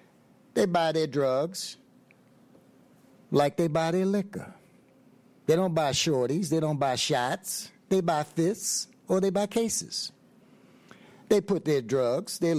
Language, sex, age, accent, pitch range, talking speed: English, male, 60-79, American, 150-225 Hz, 140 wpm